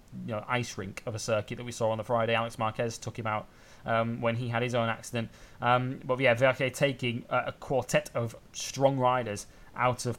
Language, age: English, 20-39